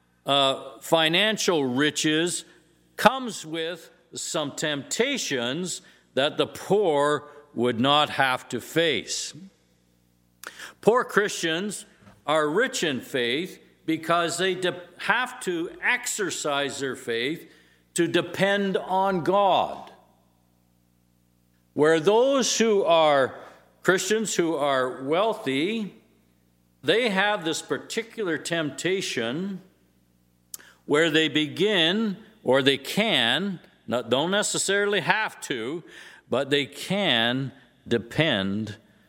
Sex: male